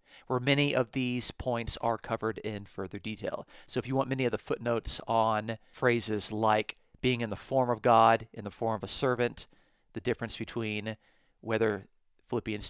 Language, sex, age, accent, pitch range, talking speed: English, male, 40-59, American, 110-140 Hz, 180 wpm